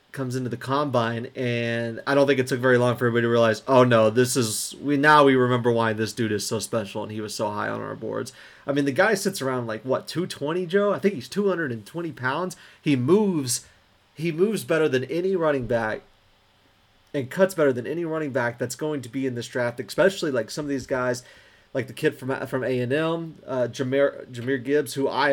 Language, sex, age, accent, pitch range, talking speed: English, male, 30-49, American, 120-145 Hz, 235 wpm